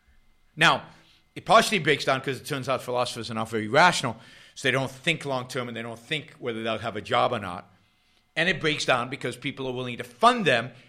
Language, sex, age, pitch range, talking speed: English, male, 50-69, 115-155 Hz, 225 wpm